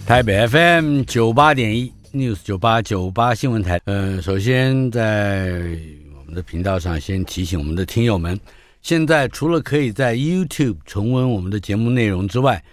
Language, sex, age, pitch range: Chinese, male, 50-69, 90-120 Hz